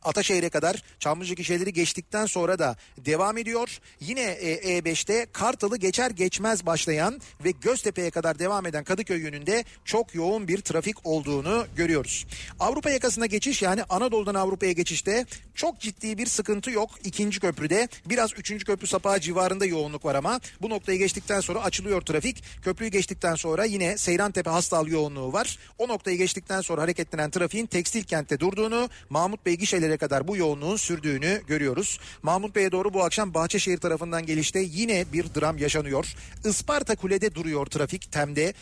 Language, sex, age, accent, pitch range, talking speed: Turkish, male, 40-59, native, 165-210 Hz, 150 wpm